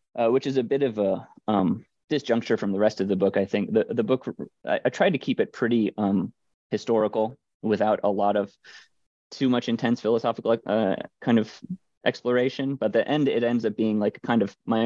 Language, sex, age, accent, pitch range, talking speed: English, male, 20-39, American, 105-120 Hz, 210 wpm